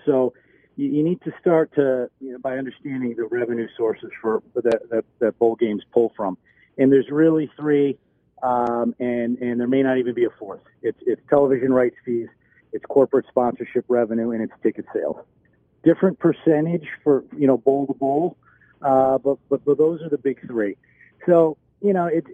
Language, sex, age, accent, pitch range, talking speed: English, male, 50-69, American, 120-160 Hz, 185 wpm